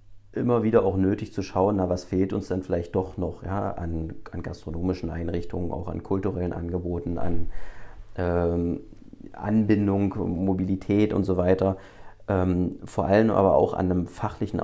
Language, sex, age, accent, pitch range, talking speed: German, male, 40-59, German, 90-105 Hz, 155 wpm